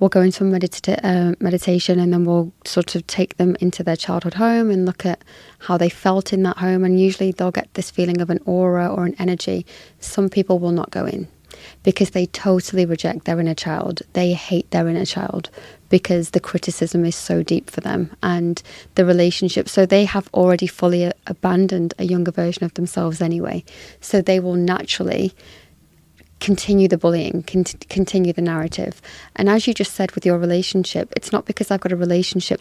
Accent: British